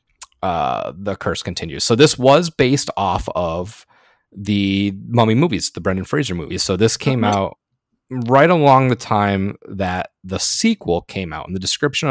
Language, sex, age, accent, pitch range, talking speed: English, male, 30-49, American, 100-120 Hz, 165 wpm